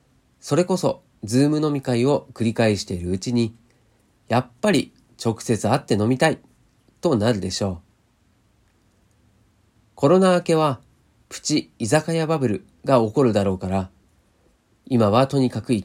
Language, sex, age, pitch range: Japanese, male, 40-59, 105-130 Hz